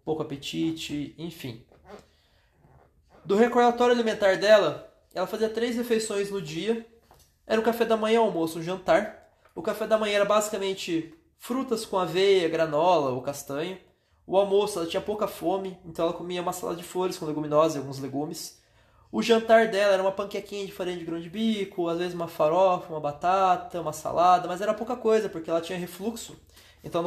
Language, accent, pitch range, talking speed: Portuguese, Brazilian, 150-200 Hz, 180 wpm